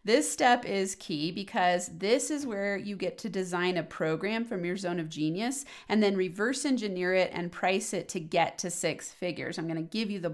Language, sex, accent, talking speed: English, female, American, 220 wpm